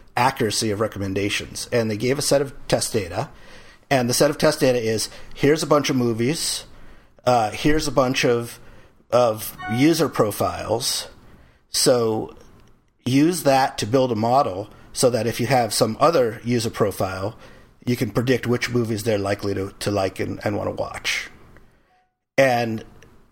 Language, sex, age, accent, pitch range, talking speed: English, male, 50-69, American, 110-135 Hz, 160 wpm